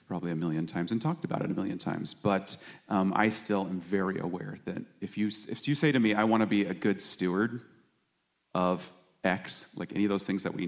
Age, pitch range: 30-49, 95-115 Hz